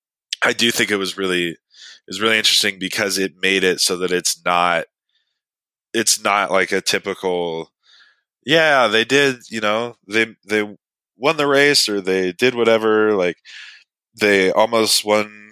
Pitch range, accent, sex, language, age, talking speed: 85-105 Hz, American, male, English, 20-39, 155 wpm